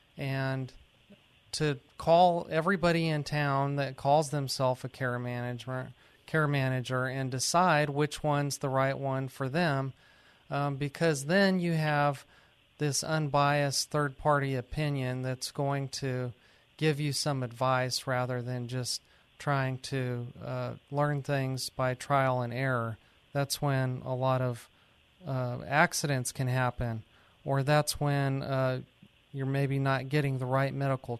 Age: 40-59